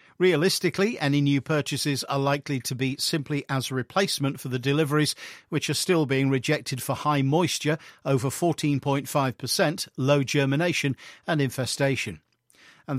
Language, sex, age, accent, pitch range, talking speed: English, male, 50-69, British, 135-170 Hz, 140 wpm